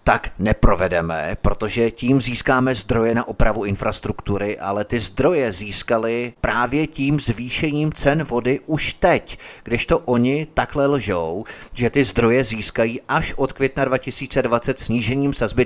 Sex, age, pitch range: male, 30-49, 105-130 Hz